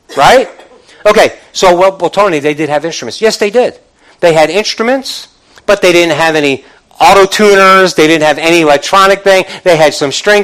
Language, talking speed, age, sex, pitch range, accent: English, 185 wpm, 50-69, male, 155-200 Hz, American